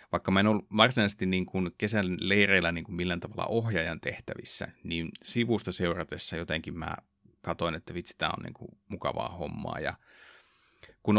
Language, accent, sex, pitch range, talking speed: Finnish, native, male, 85-105 Hz, 150 wpm